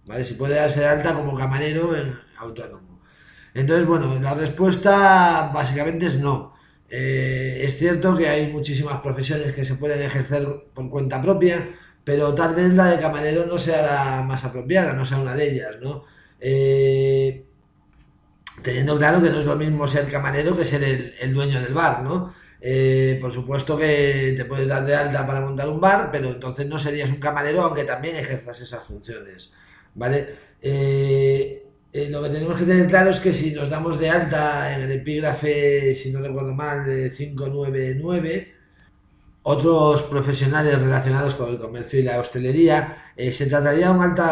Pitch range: 130-155 Hz